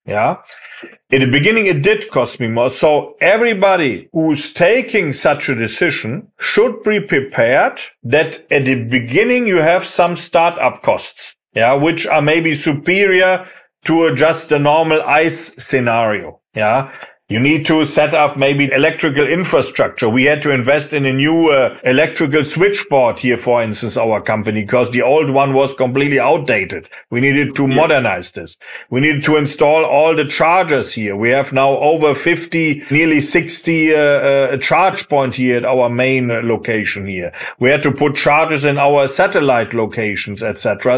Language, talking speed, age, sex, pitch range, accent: English, 165 wpm, 40-59, male, 135-180 Hz, German